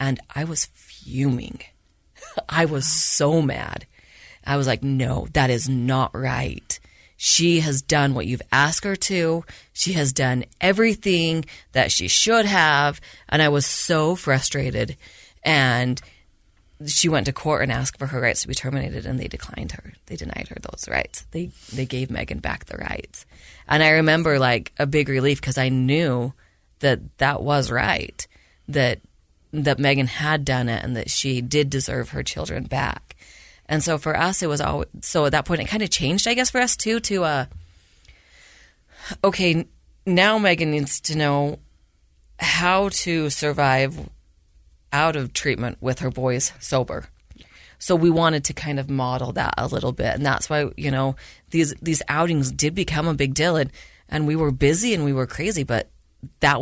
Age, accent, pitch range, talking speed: 30-49, American, 130-160 Hz, 175 wpm